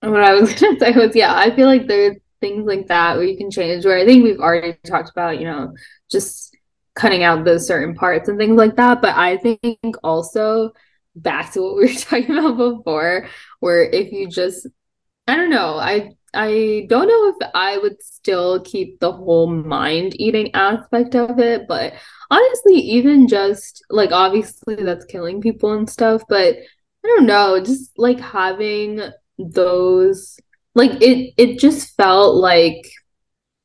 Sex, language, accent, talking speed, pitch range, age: female, English, American, 175 wpm, 175-235 Hz, 10-29